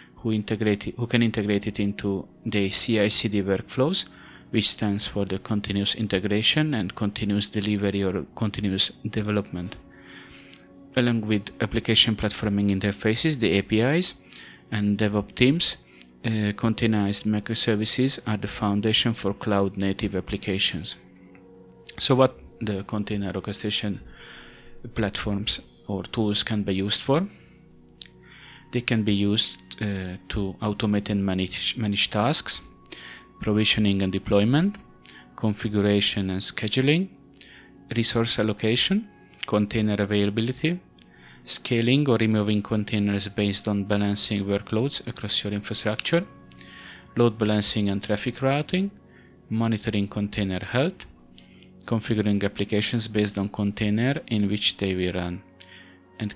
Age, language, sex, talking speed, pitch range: 30-49, English, male, 110 wpm, 100-110 Hz